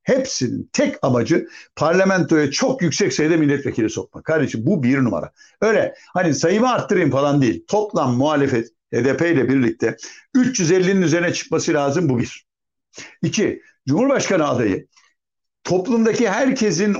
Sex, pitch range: male, 150-210 Hz